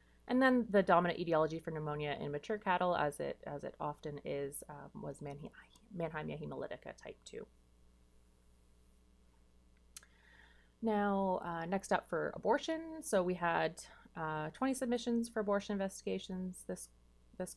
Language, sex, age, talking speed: English, female, 30-49, 135 wpm